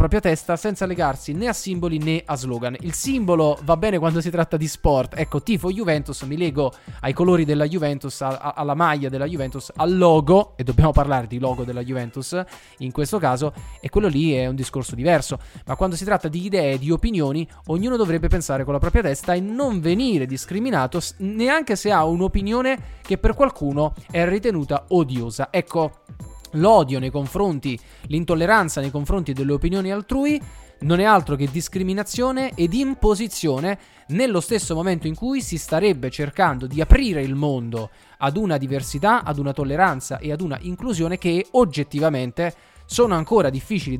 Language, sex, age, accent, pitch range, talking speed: Italian, male, 20-39, native, 140-190 Hz, 170 wpm